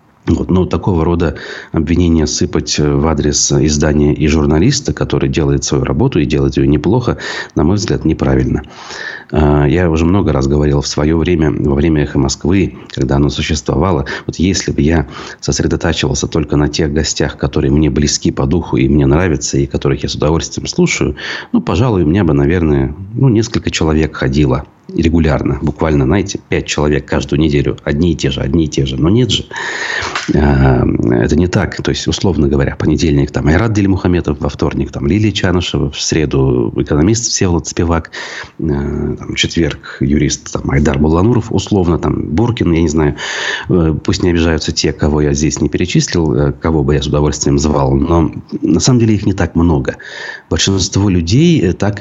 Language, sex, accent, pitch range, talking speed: Russian, male, native, 70-85 Hz, 170 wpm